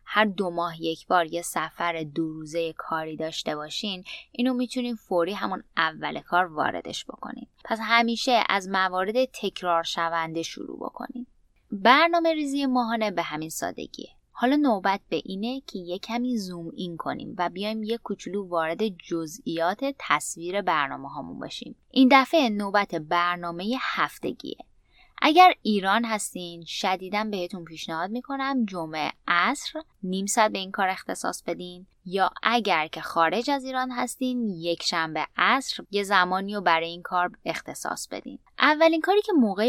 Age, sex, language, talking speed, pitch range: 20-39, female, Persian, 145 wpm, 165-235 Hz